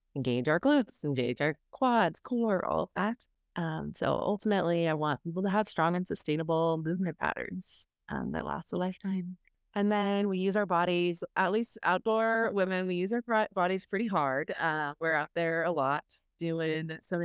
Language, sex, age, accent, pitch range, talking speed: English, female, 20-39, American, 160-200 Hz, 180 wpm